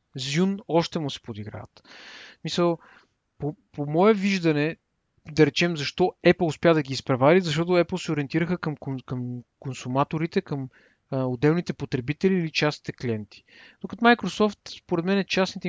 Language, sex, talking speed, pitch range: Bulgarian, male, 140 wpm, 130-165 Hz